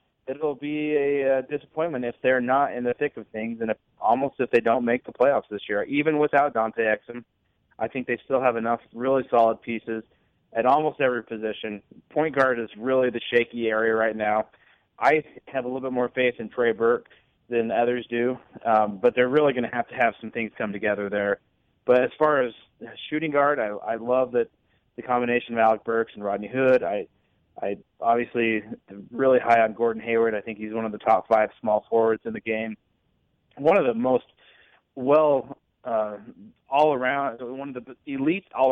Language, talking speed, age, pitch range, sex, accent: English, 200 wpm, 30-49, 110-135 Hz, male, American